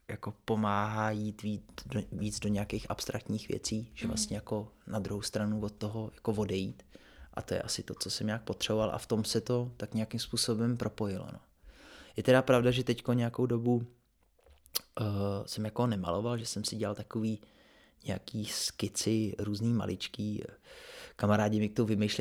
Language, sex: Czech, male